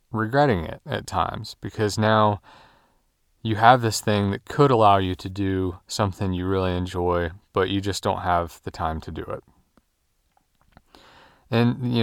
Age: 30-49